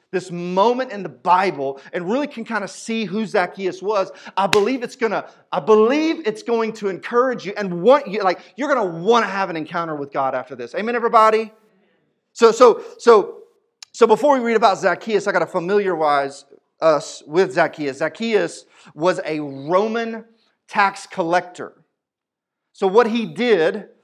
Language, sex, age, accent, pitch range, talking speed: English, male, 40-59, American, 180-235 Hz, 175 wpm